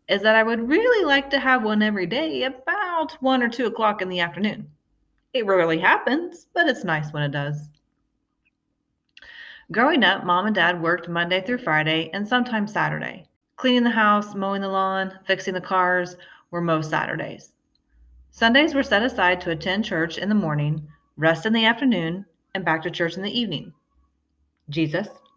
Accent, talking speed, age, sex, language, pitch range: American, 175 wpm, 30-49, female, English, 170-255 Hz